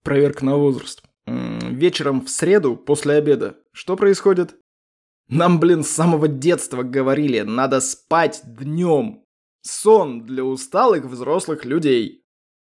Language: Russian